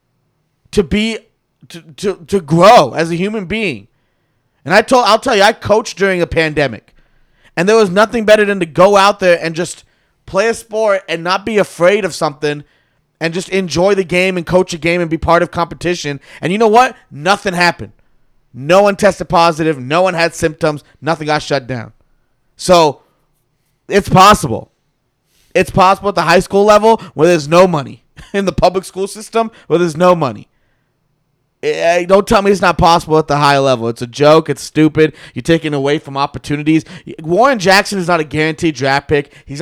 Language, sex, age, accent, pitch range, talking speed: English, male, 30-49, American, 150-195 Hz, 190 wpm